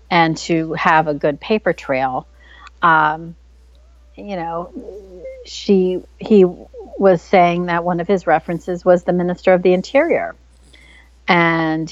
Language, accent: English, American